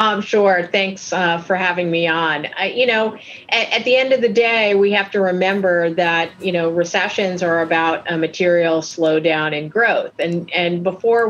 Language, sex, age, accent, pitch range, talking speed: English, female, 40-59, American, 175-205 Hz, 185 wpm